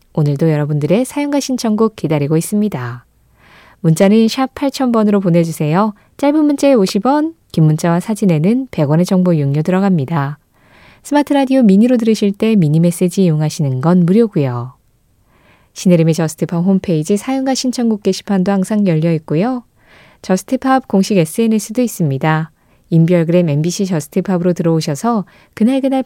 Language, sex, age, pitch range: Korean, female, 20-39, 160-220 Hz